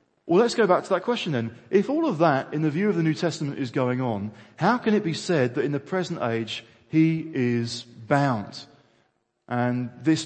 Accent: British